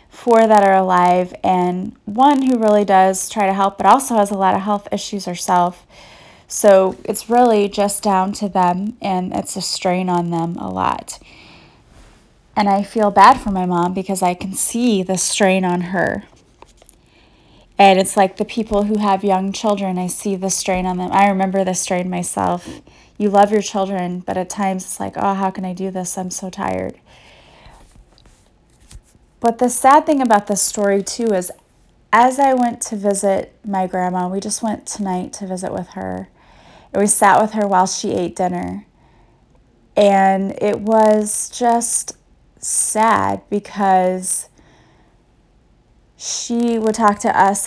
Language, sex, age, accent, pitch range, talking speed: English, female, 20-39, American, 185-215 Hz, 165 wpm